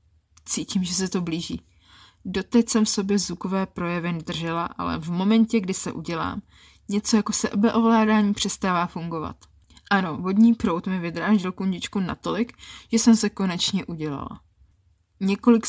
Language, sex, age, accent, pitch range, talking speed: Czech, female, 20-39, native, 135-210 Hz, 140 wpm